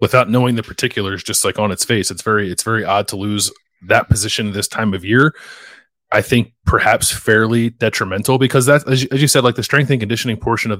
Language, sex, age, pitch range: English, male, 20-39, 100-120 Hz